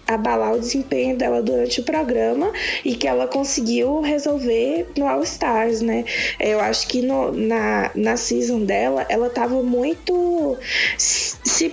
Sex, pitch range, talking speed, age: female, 230-275 Hz, 140 wpm, 20-39